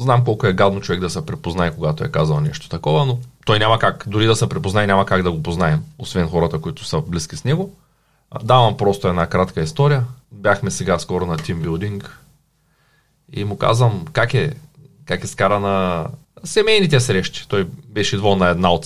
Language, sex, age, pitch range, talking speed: Bulgarian, male, 30-49, 100-145 Hz, 195 wpm